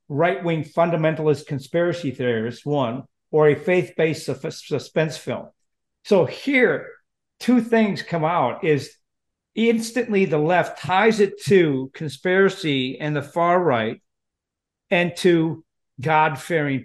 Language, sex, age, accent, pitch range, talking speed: English, male, 50-69, American, 140-175 Hz, 130 wpm